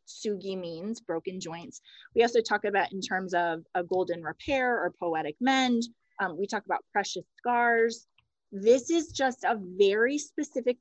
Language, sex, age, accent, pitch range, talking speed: English, female, 30-49, American, 185-240 Hz, 160 wpm